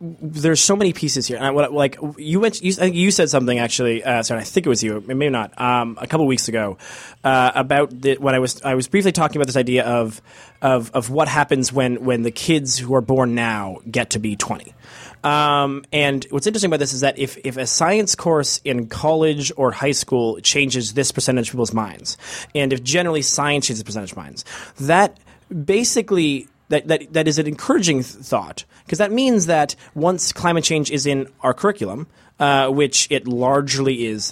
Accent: American